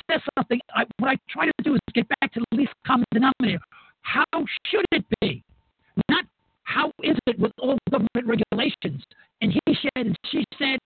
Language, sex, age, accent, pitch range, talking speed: English, male, 60-79, American, 205-275 Hz, 190 wpm